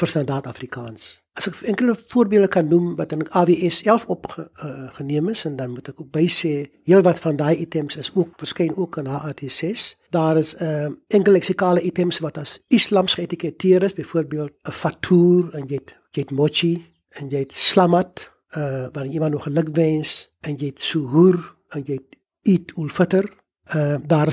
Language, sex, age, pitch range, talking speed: English, male, 60-79, 150-180 Hz, 185 wpm